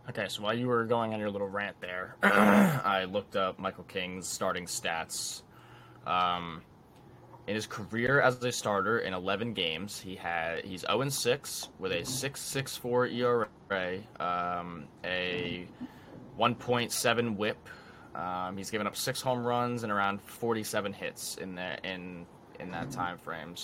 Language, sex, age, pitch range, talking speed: English, male, 20-39, 95-120 Hz, 160 wpm